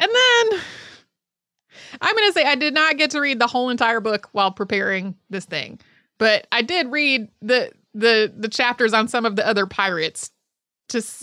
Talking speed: 180 wpm